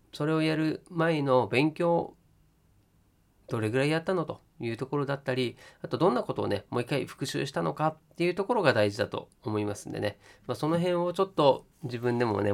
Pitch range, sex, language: 105-155 Hz, male, Japanese